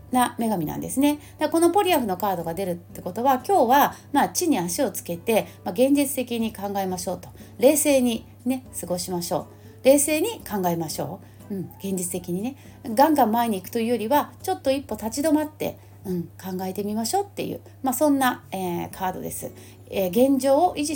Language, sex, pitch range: Japanese, female, 180-280 Hz